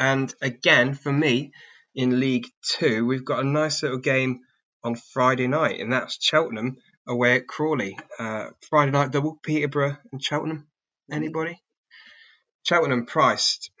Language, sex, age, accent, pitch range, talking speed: English, male, 20-39, British, 115-150 Hz, 140 wpm